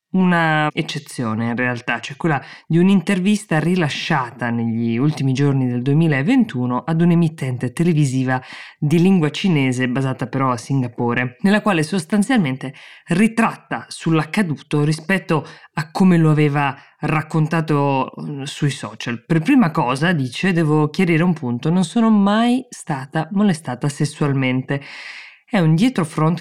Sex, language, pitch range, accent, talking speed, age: female, Italian, 135-175 Hz, native, 125 wpm, 20-39